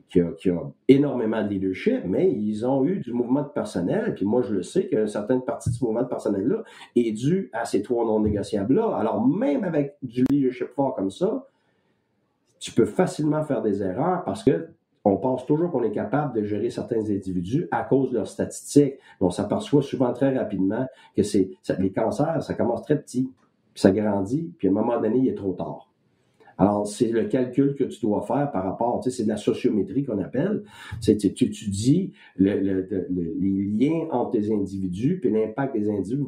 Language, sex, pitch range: French, male, 105-145 Hz